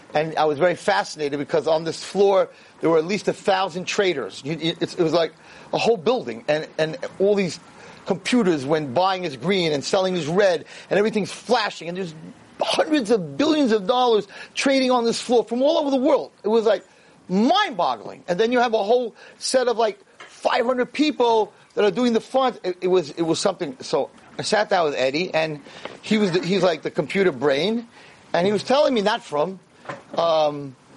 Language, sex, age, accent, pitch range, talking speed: English, male, 40-59, American, 175-230 Hz, 200 wpm